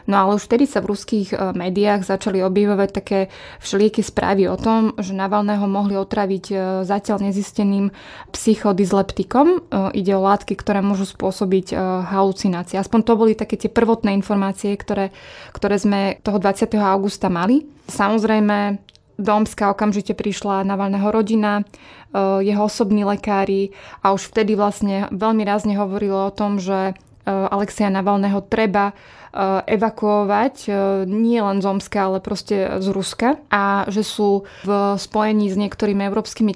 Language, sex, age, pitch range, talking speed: Slovak, female, 20-39, 195-210 Hz, 135 wpm